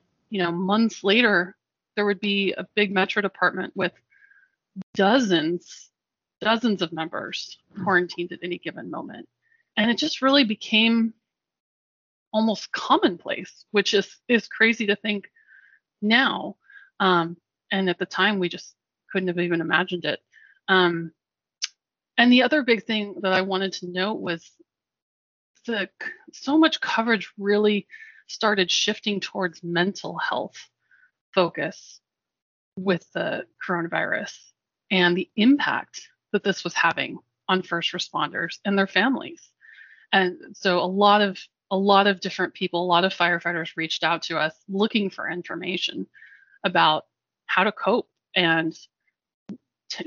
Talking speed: 135 wpm